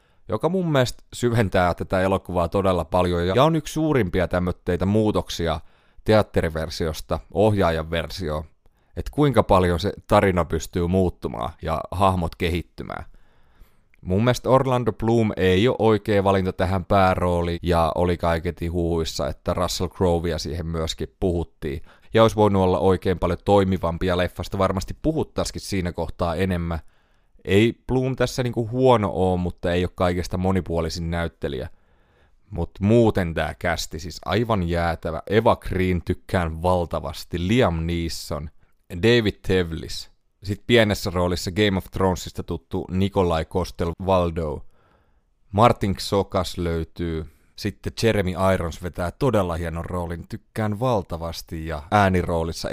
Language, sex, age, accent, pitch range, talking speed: Finnish, male, 30-49, native, 85-100 Hz, 125 wpm